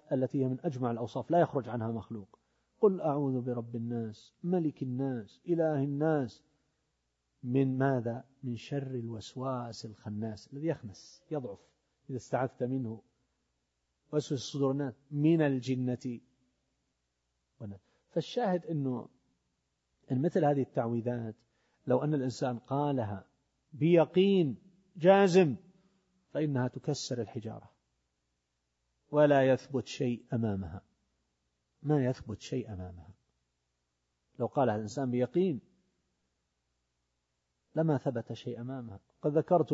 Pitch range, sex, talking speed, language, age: 95-145 Hz, male, 100 wpm, Arabic, 50-69